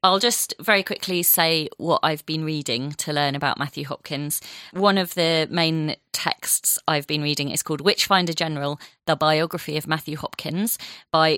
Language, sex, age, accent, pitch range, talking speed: English, female, 30-49, British, 150-190 Hz, 170 wpm